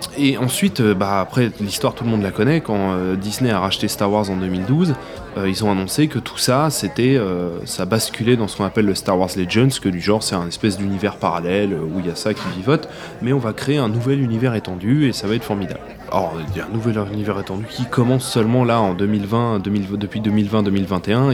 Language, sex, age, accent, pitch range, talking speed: French, male, 20-39, French, 100-125 Hz, 235 wpm